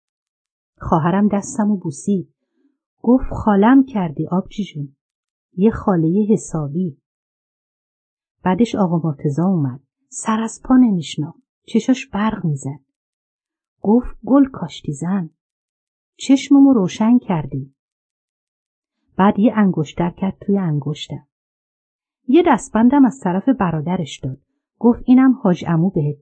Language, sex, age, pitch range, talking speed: Persian, female, 50-69, 160-240 Hz, 110 wpm